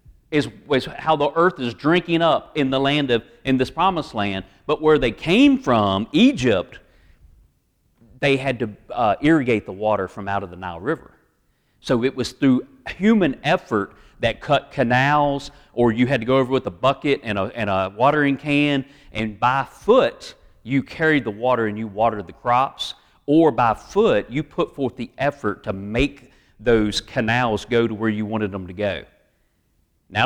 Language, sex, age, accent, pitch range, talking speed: English, male, 40-59, American, 105-145 Hz, 180 wpm